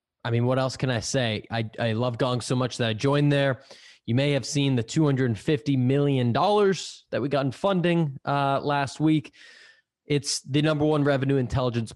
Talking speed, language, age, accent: 190 wpm, English, 20-39, American